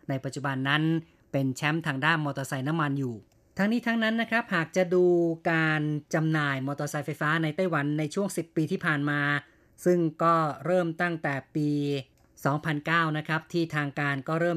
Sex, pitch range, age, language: female, 145-170 Hz, 20-39, Thai